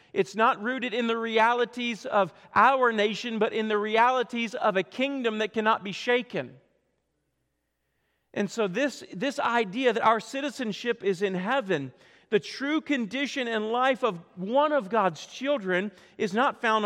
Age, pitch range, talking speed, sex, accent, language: 40-59, 185-245 Hz, 155 wpm, male, American, English